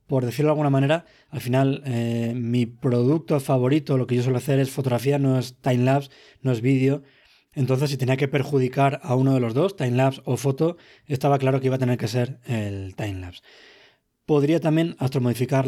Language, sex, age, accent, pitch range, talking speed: Spanish, male, 20-39, Spanish, 125-150 Hz, 190 wpm